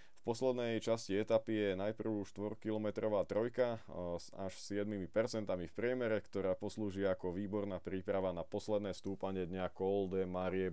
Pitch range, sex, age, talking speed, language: 95-110 Hz, male, 20-39, 140 wpm, Slovak